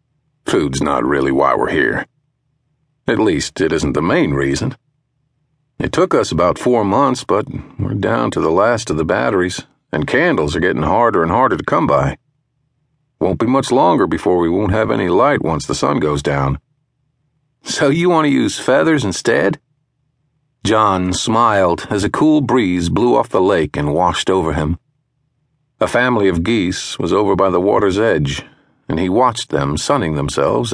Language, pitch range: English, 95-145 Hz